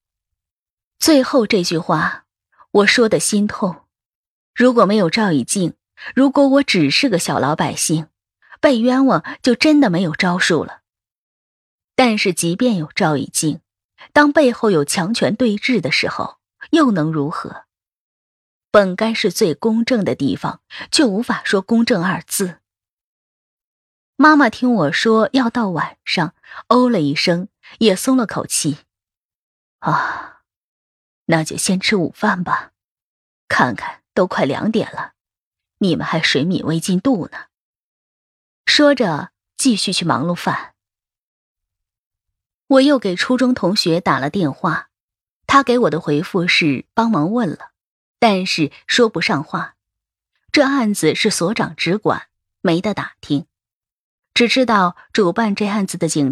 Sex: female